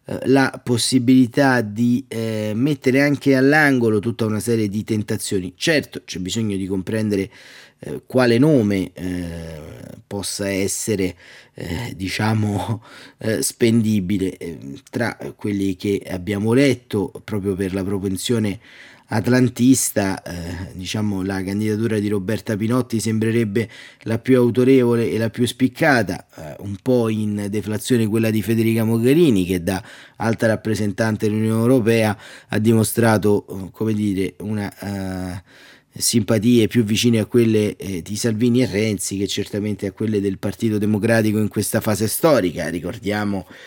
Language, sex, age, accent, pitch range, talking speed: Italian, male, 30-49, native, 100-115 Hz, 130 wpm